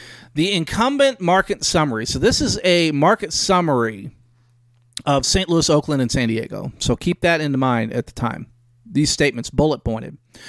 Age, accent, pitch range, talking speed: 40-59, American, 120-170 Hz, 165 wpm